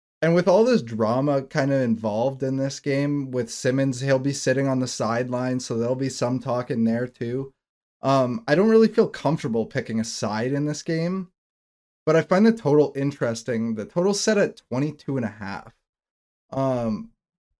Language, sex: English, male